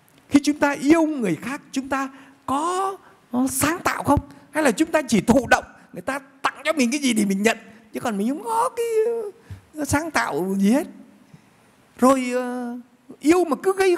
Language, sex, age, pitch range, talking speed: Vietnamese, male, 60-79, 185-275 Hz, 190 wpm